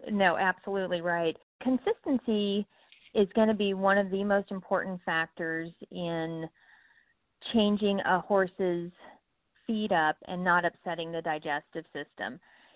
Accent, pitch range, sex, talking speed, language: American, 170-205 Hz, female, 120 wpm, English